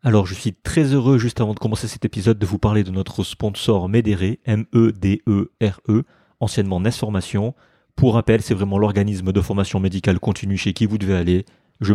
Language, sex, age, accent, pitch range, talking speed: French, male, 30-49, French, 95-115 Hz, 175 wpm